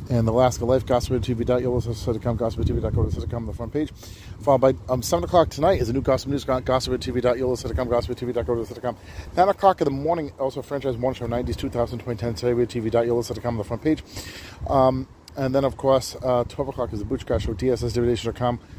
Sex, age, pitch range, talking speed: male, 40-59, 110-130 Hz, 175 wpm